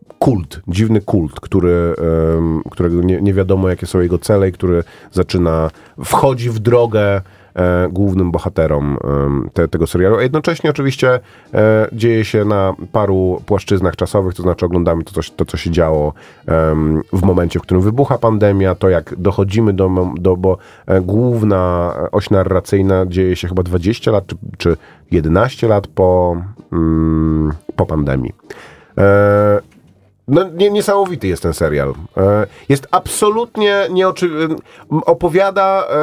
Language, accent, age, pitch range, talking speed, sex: Polish, native, 30-49, 90-150 Hz, 130 wpm, male